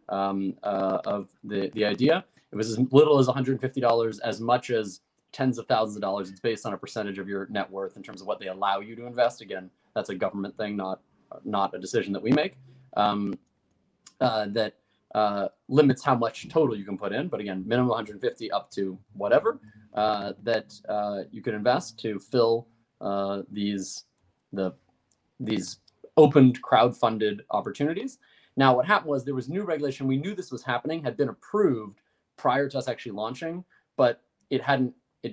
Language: English